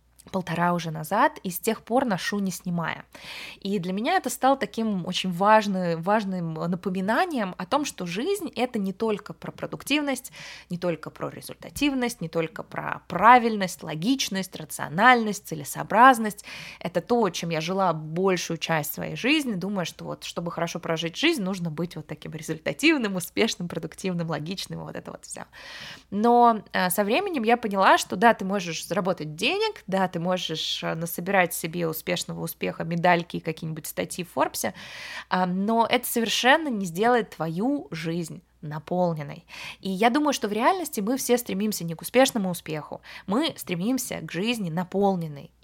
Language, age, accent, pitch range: Russian, 20-39, native, 170-225 Hz